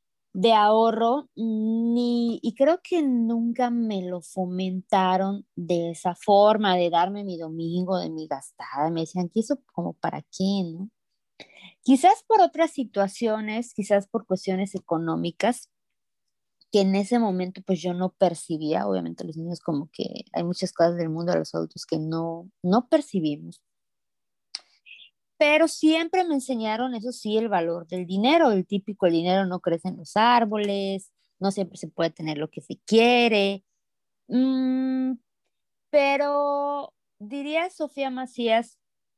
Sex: female